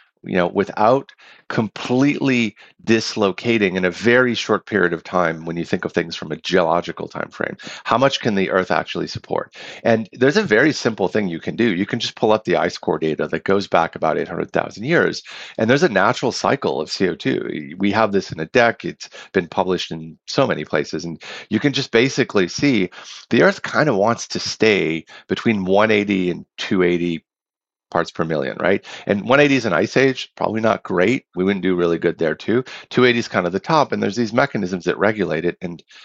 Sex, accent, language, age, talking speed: male, American, English, 40-59, 205 wpm